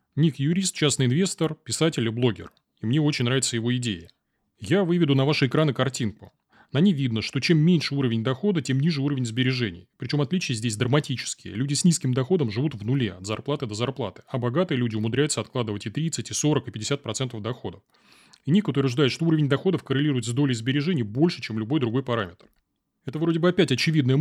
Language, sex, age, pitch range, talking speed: Russian, male, 30-49, 120-150 Hz, 195 wpm